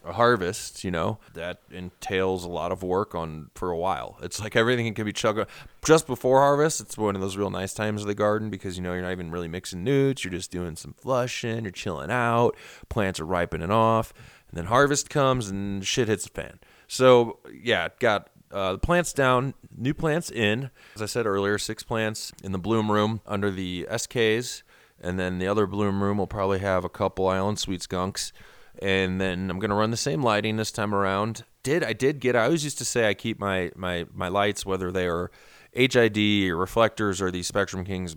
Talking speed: 215 wpm